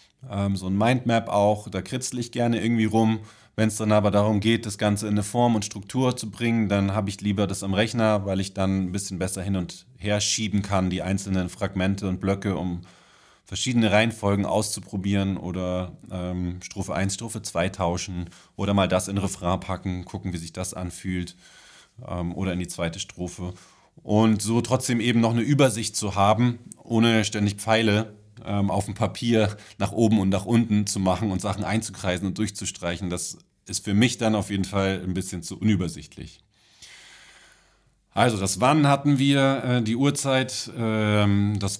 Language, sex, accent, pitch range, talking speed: German, male, German, 95-115 Hz, 175 wpm